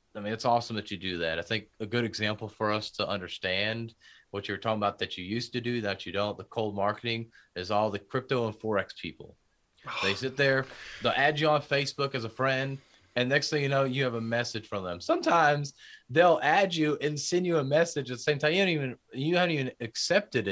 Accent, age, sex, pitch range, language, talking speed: American, 30-49, male, 110-155 Hz, English, 230 wpm